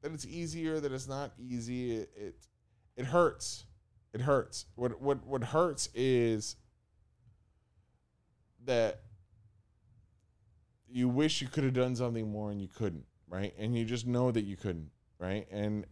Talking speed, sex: 150 wpm, male